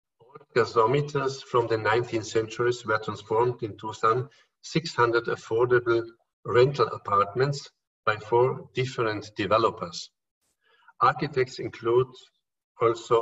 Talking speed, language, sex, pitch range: 90 wpm, English, male, 110-135 Hz